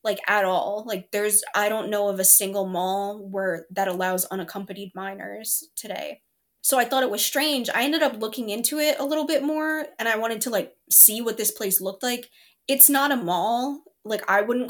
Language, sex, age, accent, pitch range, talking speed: English, female, 10-29, American, 200-250 Hz, 210 wpm